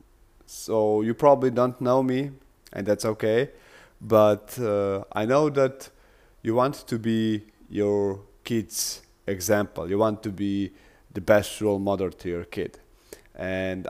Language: English